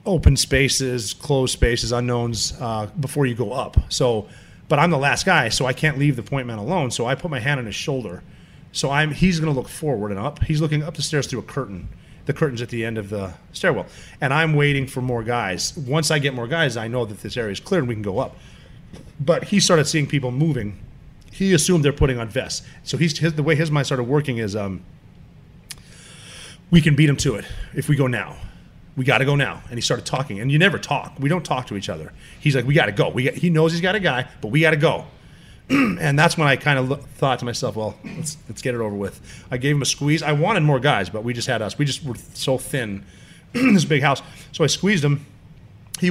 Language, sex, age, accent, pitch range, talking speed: English, male, 30-49, American, 120-155 Hz, 250 wpm